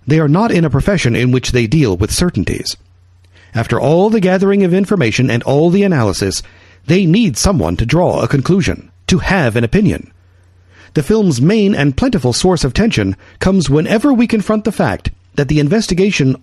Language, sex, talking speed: English, male, 185 wpm